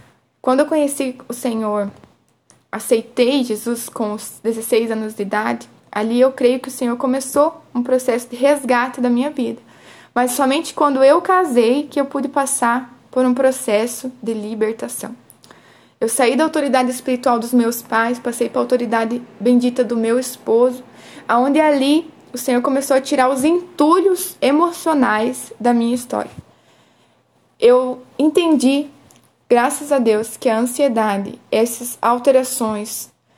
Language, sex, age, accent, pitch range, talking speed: Portuguese, female, 20-39, Brazilian, 230-270 Hz, 145 wpm